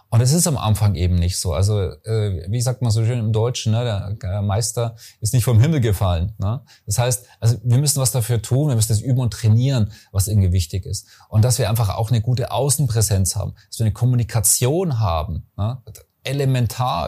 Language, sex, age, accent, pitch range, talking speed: German, male, 30-49, German, 100-125 Hz, 210 wpm